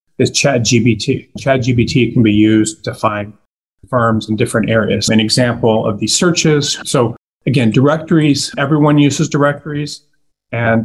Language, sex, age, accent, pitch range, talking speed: English, male, 40-59, American, 115-140 Hz, 135 wpm